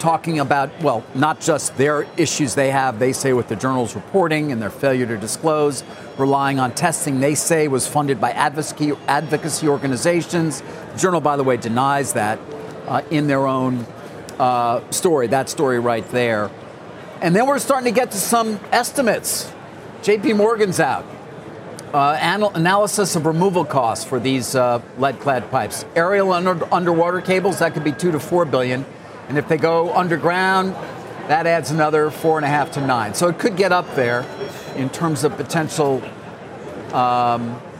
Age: 50-69